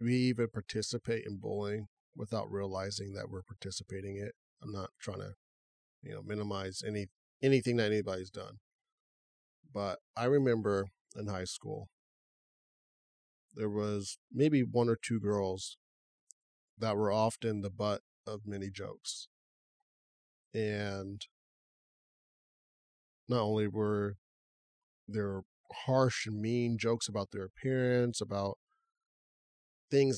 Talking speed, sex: 115 wpm, male